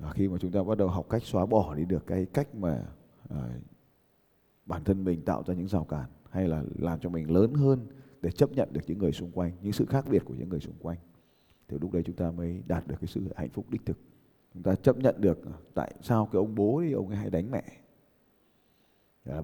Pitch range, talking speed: 85-110 Hz, 245 wpm